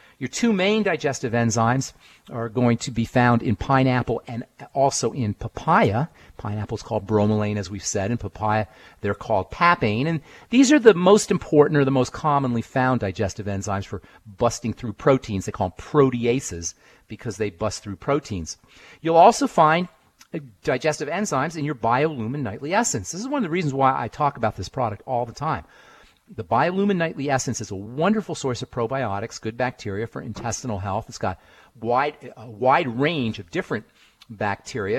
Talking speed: 175 wpm